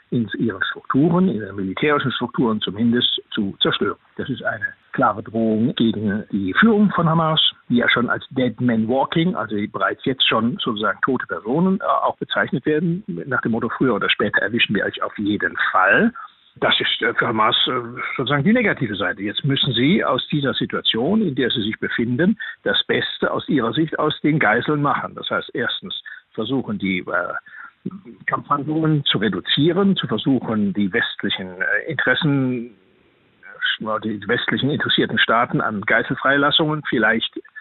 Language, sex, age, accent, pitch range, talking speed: German, male, 60-79, German, 120-180 Hz, 155 wpm